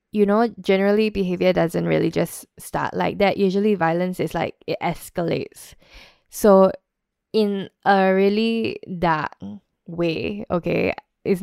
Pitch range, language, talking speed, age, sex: 170-210 Hz, English, 125 wpm, 10-29, female